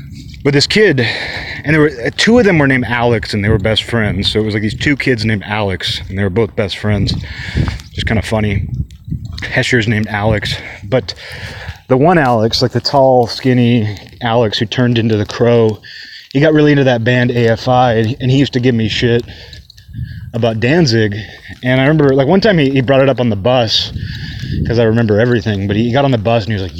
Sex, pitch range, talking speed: male, 100-135 Hz, 215 wpm